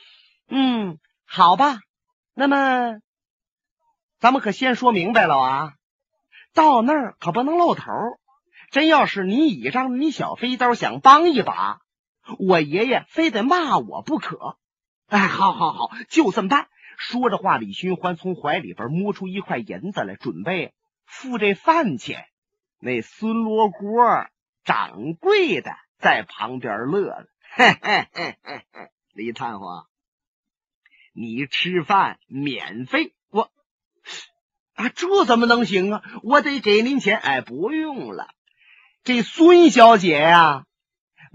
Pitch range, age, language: 200-320 Hz, 30-49, Chinese